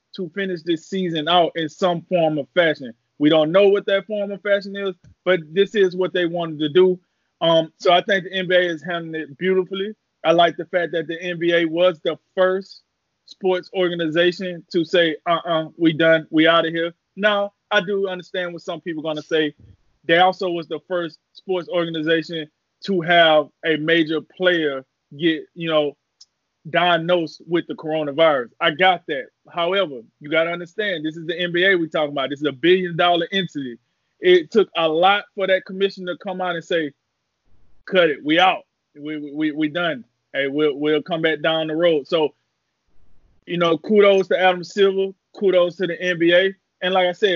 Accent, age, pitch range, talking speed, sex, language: American, 20-39, 160-195 Hz, 195 wpm, male, English